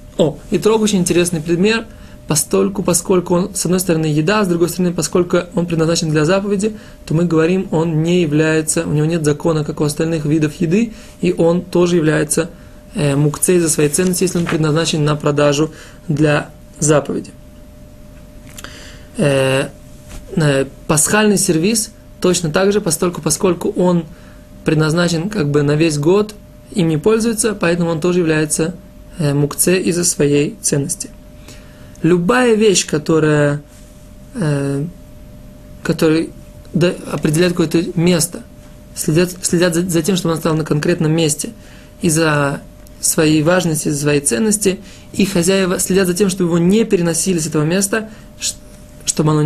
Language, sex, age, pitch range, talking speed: Russian, male, 20-39, 155-185 Hz, 135 wpm